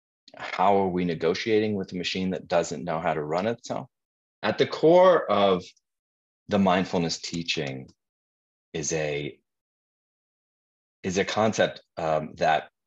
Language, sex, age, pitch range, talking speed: English, male, 30-49, 75-110 Hz, 135 wpm